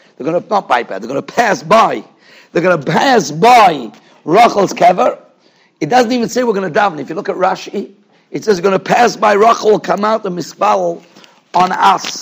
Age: 50-69